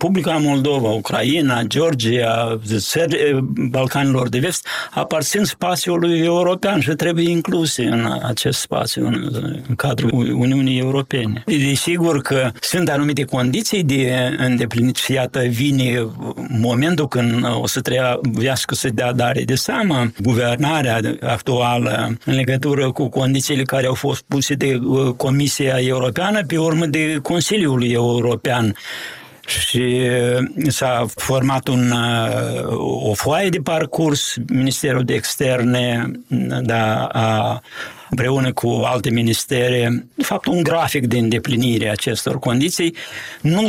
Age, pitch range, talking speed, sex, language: 60-79, 120-150 Hz, 115 wpm, male, Romanian